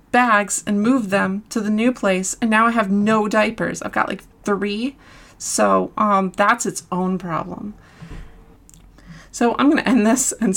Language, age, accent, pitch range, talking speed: English, 30-49, American, 185-235 Hz, 170 wpm